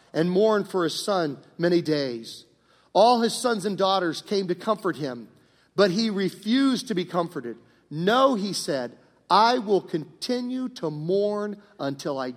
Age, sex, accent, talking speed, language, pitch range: 50-69, male, American, 155 wpm, English, 130-190 Hz